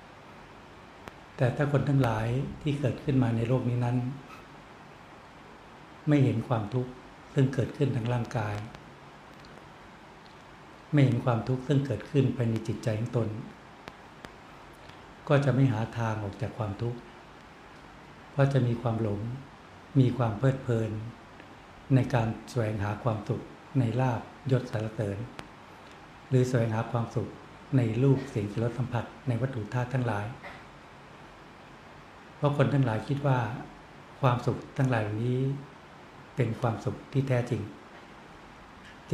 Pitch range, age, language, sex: 115-135 Hz, 60-79, Thai, male